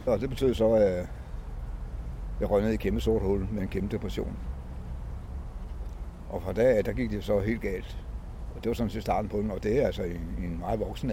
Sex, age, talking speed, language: male, 60-79, 230 wpm, Danish